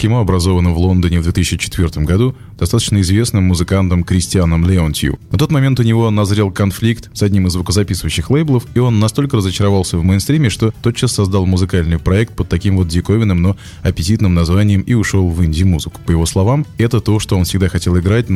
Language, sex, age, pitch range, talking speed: Russian, male, 20-39, 95-115 Hz, 185 wpm